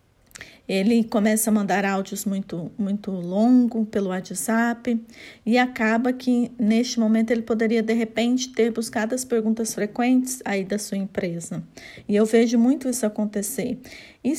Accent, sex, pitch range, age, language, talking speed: Brazilian, female, 215-260 Hz, 40-59, Portuguese, 145 wpm